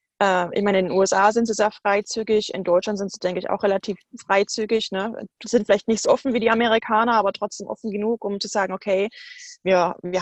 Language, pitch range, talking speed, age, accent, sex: English, 200-235 Hz, 225 wpm, 20-39, German, female